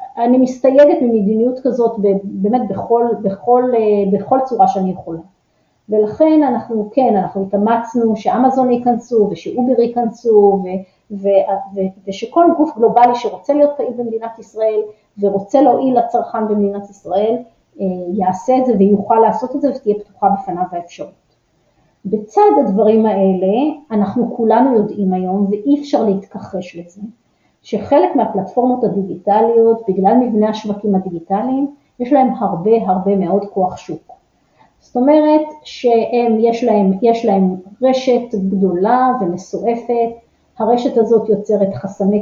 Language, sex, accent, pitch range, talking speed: Hebrew, female, native, 195-240 Hz, 120 wpm